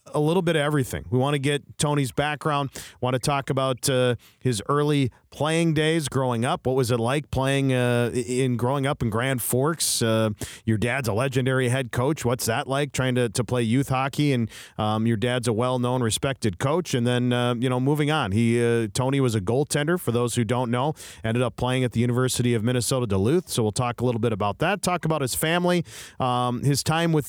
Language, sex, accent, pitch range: English, male, American, 115-145 Hz